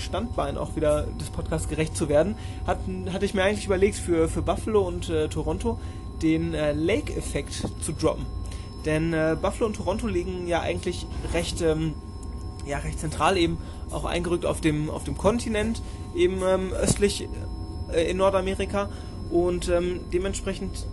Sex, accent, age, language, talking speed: male, German, 20-39, German, 160 wpm